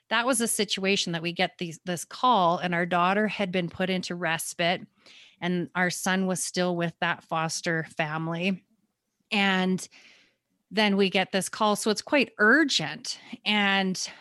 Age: 30-49